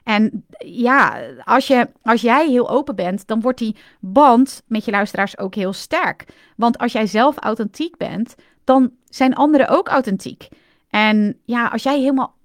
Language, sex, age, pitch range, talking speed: Dutch, female, 30-49, 195-260 Hz, 165 wpm